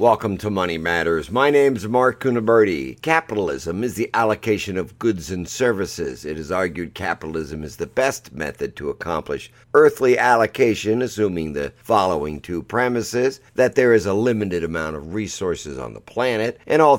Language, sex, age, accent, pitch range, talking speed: English, male, 50-69, American, 85-115 Hz, 165 wpm